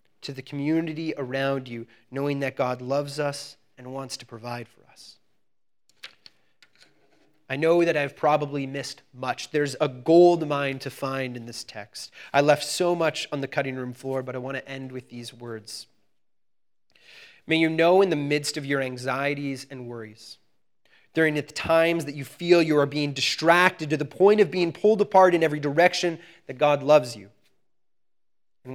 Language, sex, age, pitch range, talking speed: English, male, 30-49, 130-160 Hz, 175 wpm